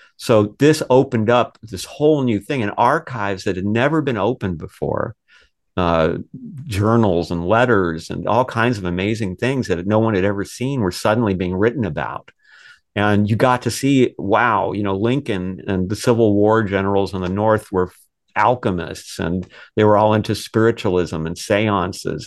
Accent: American